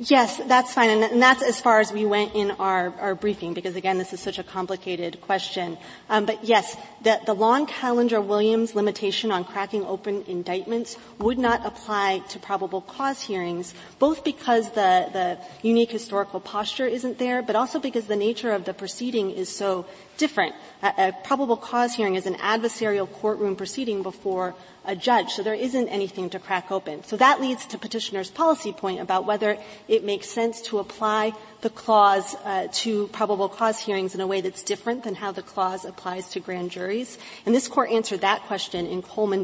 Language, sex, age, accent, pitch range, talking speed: English, female, 30-49, American, 190-225 Hz, 190 wpm